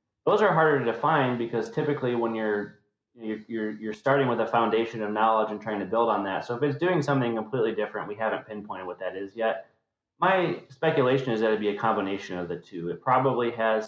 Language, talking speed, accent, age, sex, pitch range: English, 225 wpm, American, 30-49, male, 105-125 Hz